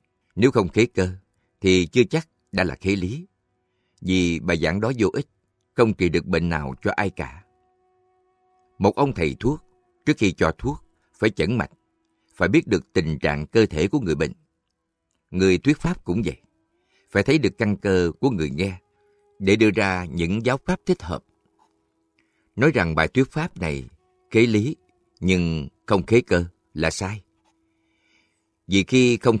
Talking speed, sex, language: 170 wpm, male, Vietnamese